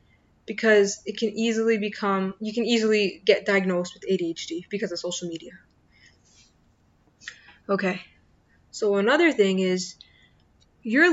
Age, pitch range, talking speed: 20-39, 195-230 Hz, 120 wpm